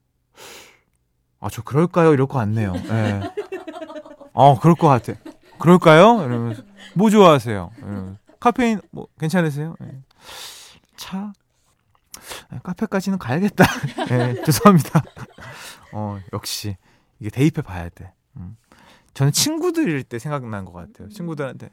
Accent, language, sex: native, Korean, male